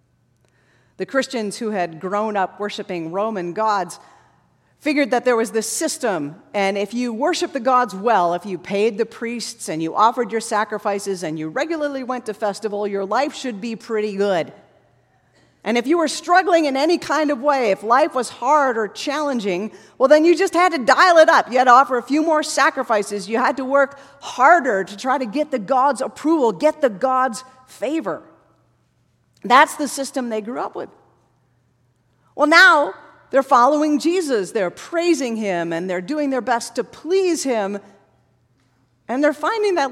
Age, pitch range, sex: 40-59, 200-300 Hz, female